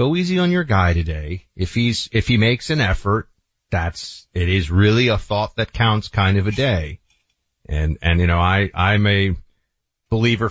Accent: American